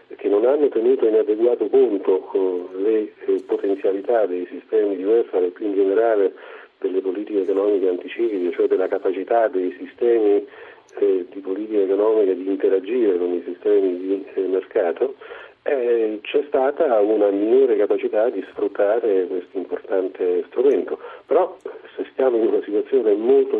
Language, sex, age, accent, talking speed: Italian, male, 50-69, native, 145 wpm